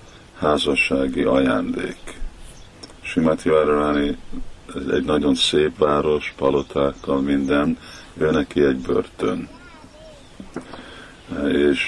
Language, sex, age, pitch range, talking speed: Hungarian, male, 50-69, 70-85 Hz, 75 wpm